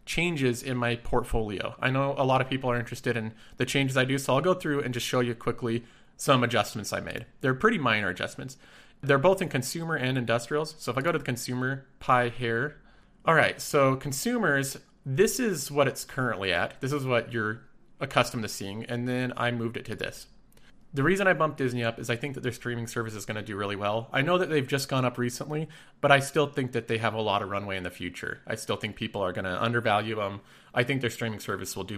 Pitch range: 115-140 Hz